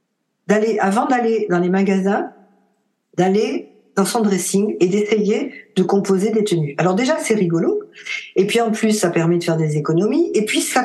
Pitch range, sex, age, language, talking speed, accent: 185-230 Hz, female, 50-69, French, 185 wpm, French